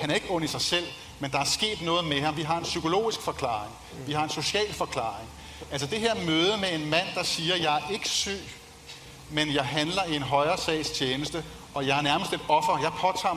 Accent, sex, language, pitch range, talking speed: Danish, male, English, 140-175 Hz, 235 wpm